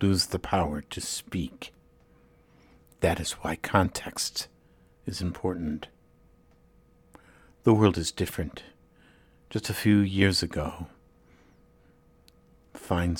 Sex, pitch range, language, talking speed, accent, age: male, 80-100 Hz, English, 95 wpm, American, 60-79